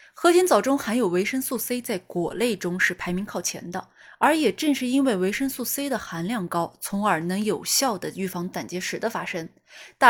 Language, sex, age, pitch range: Chinese, female, 20-39, 180-255 Hz